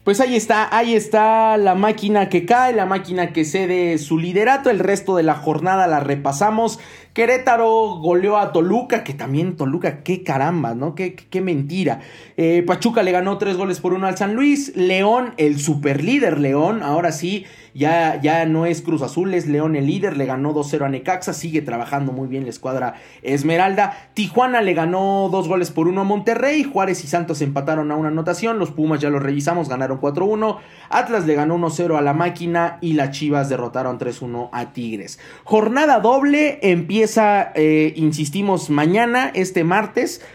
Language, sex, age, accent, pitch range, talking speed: Spanish, male, 30-49, Mexican, 145-200 Hz, 175 wpm